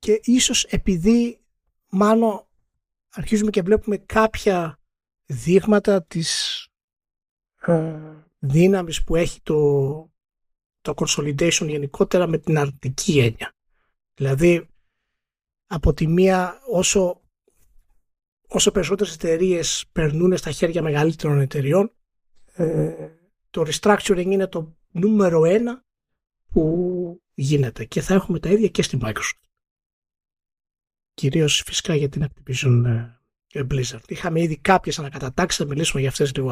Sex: male